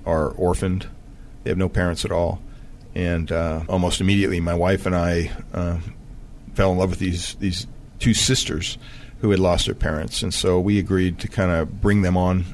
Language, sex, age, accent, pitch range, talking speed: English, male, 40-59, American, 90-110 Hz, 190 wpm